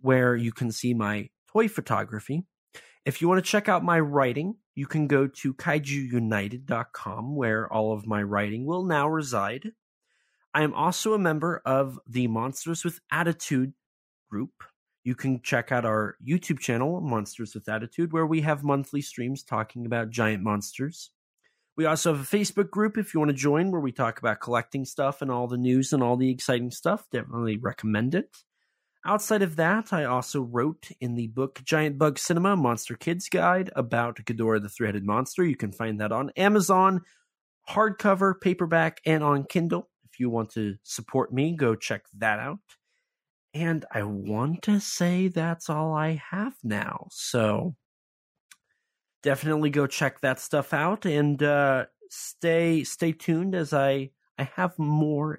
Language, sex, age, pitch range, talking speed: English, male, 30-49, 120-170 Hz, 170 wpm